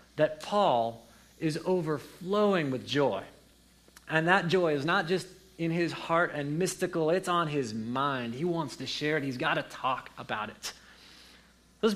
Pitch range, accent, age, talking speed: 145-215 Hz, American, 30-49, 165 wpm